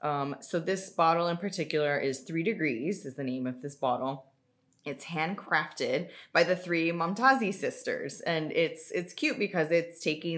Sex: female